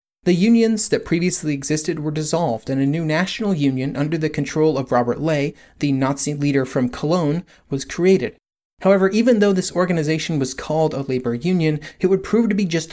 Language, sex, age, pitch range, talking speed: English, male, 30-49, 140-180 Hz, 190 wpm